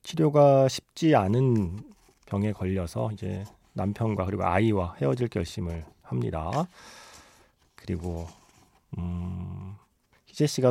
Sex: male